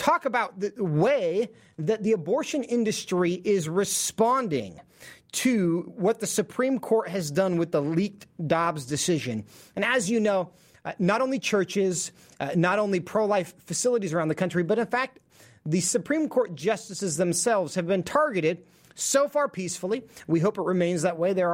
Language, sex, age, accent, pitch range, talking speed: English, male, 30-49, American, 175-225 Hz, 165 wpm